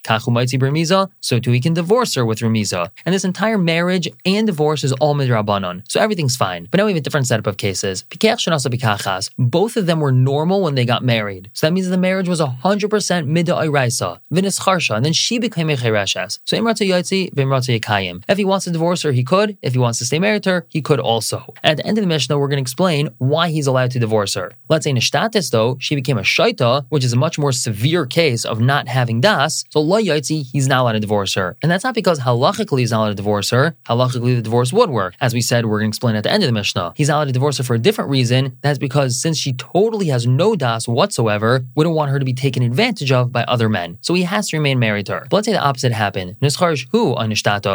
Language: English